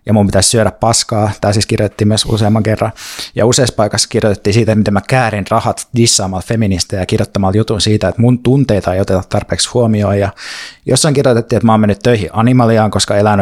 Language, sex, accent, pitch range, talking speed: Finnish, male, native, 100-120 Hz, 195 wpm